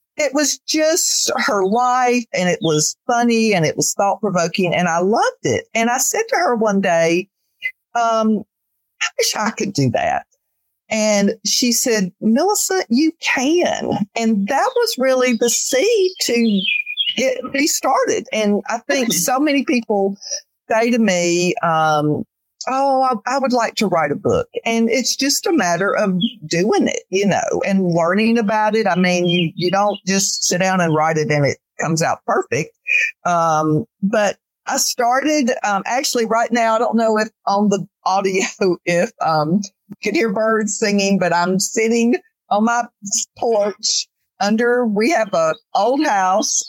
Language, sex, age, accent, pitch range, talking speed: English, female, 50-69, American, 190-260 Hz, 165 wpm